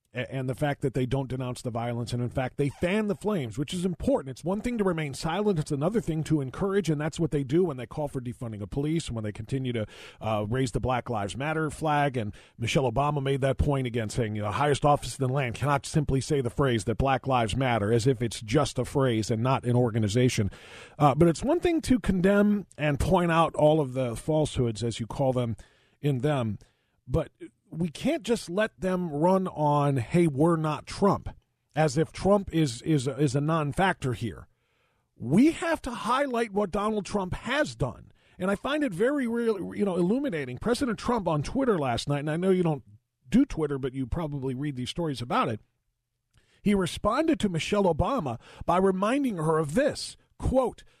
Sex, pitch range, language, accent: male, 125-185 Hz, English, American